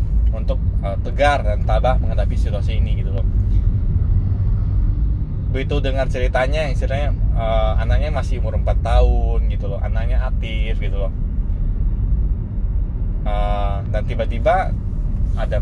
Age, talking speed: 20-39, 115 wpm